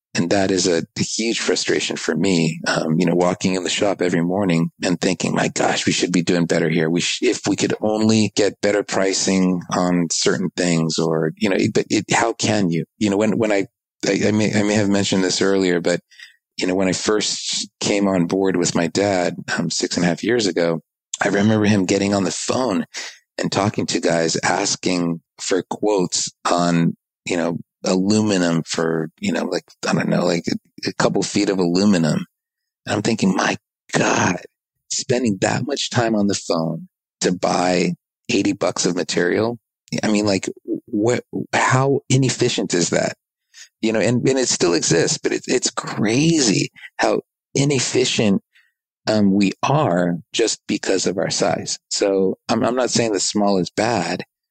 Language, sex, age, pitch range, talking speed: English, male, 30-49, 85-105 Hz, 190 wpm